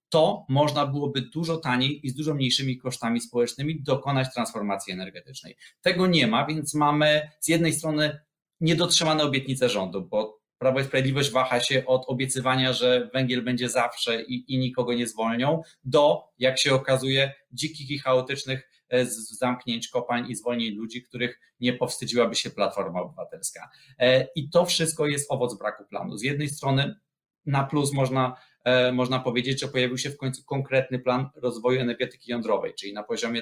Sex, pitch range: male, 120-140 Hz